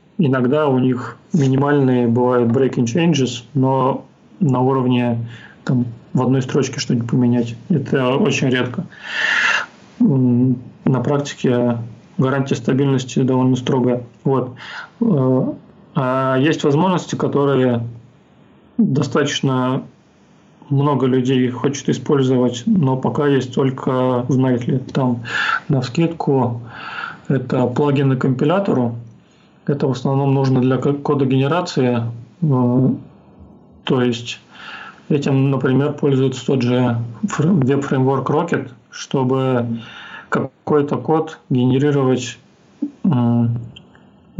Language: Russian